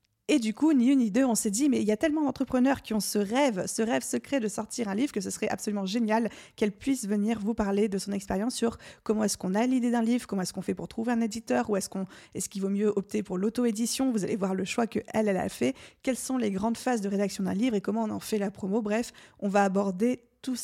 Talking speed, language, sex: 280 wpm, French, female